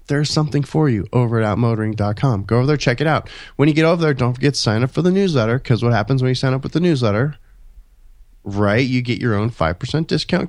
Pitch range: 105-150 Hz